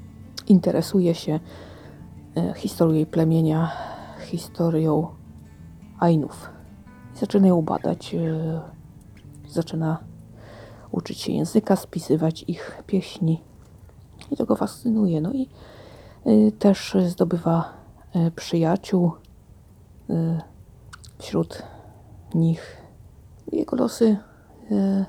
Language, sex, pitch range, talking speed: Polish, female, 115-190 Hz, 85 wpm